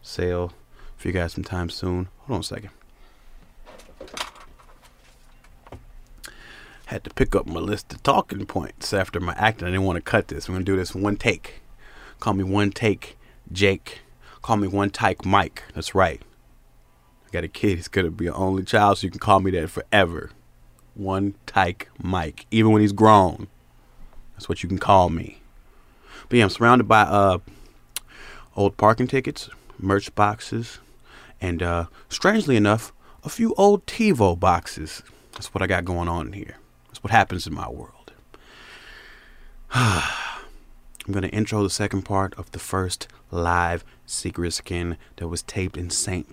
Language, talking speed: English, 165 wpm